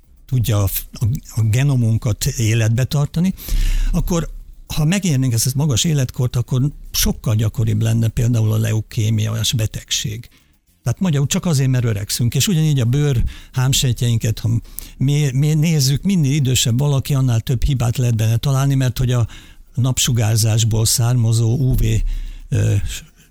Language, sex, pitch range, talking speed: Hungarian, male, 110-130 Hz, 130 wpm